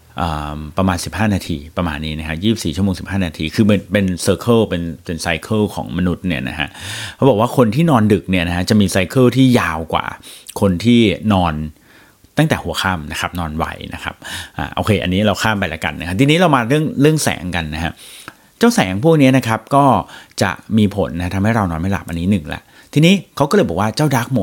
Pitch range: 90-120 Hz